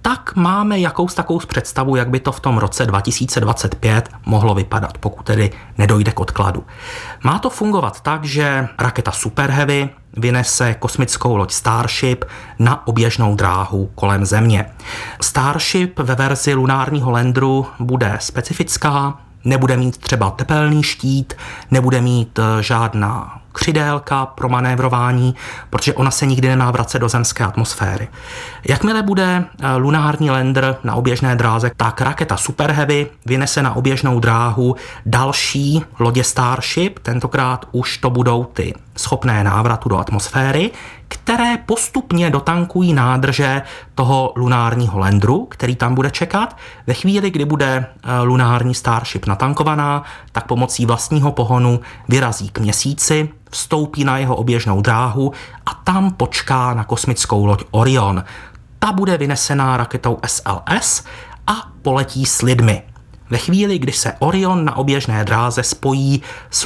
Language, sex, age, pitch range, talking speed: Czech, male, 30-49, 115-140 Hz, 130 wpm